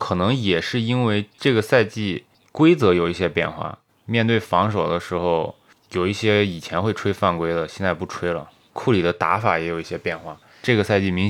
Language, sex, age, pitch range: Chinese, male, 20-39, 85-105 Hz